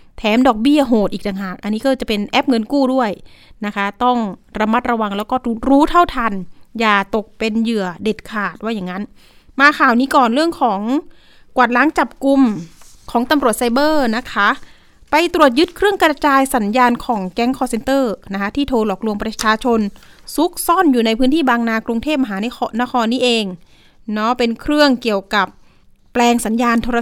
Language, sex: Thai, female